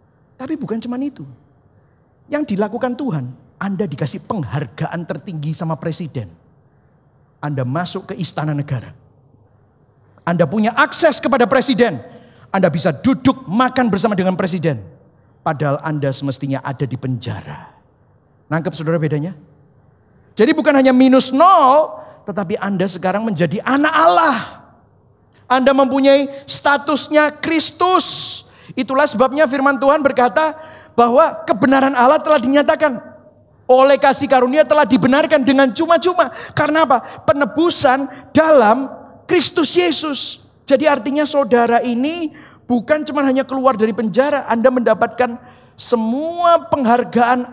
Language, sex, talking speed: Indonesian, male, 115 wpm